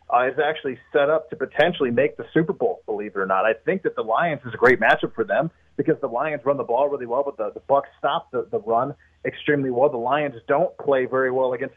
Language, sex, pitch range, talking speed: English, male, 130-155 Hz, 260 wpm